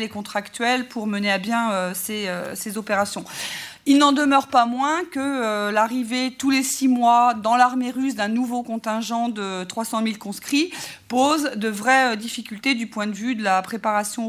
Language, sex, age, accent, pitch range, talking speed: French, female, 40-59, French, 200-245 Hz, 170 wpm